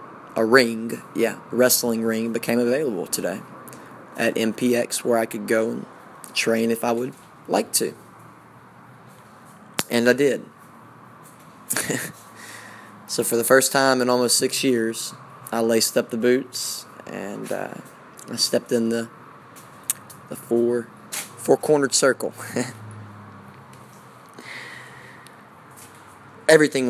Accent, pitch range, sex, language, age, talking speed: American, 115-125 Hz, male, English, 20-39, 110 wpm